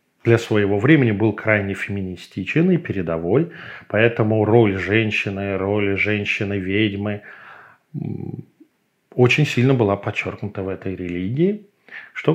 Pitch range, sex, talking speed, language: 100-130 Hz, male, 100 wpm, Russian